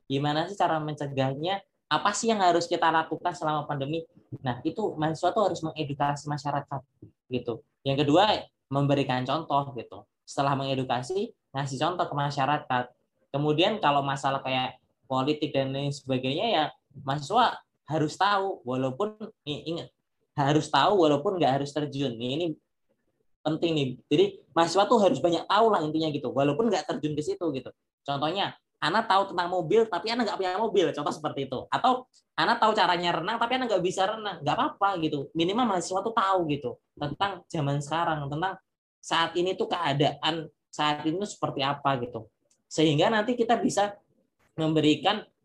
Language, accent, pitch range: Indonesian, native, 135-175 Hz